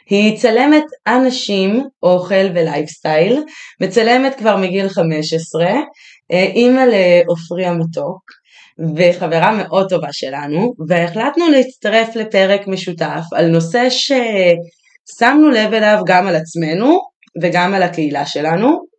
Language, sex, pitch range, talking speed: Hebrew, female, 160-215 Hz, 105 wpm